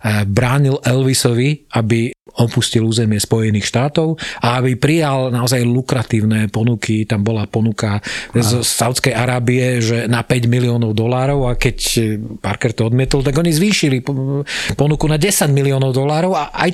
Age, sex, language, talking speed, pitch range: 40-59, male, Slovak, 140 wpm, 120-145 Hz